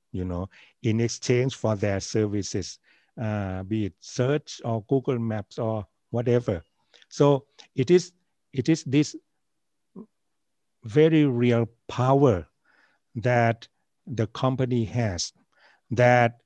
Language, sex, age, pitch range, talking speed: English, male, 60-79, 105-130 Hz, 110 wpm